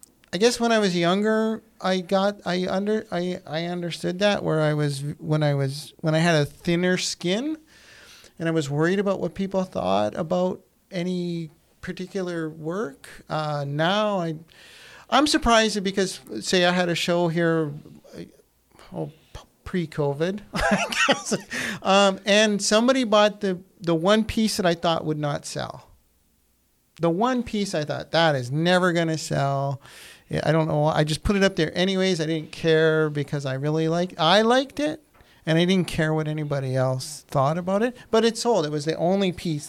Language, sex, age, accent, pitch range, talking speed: English, male, 50-69, American, 155-200 Hz, 175 wpm